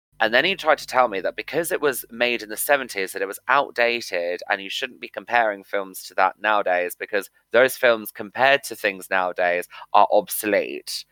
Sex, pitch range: male, 100-120 Hz